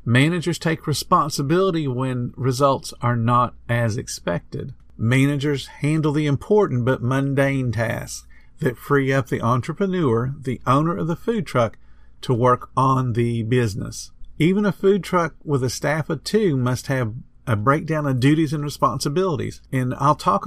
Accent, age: American, 50-69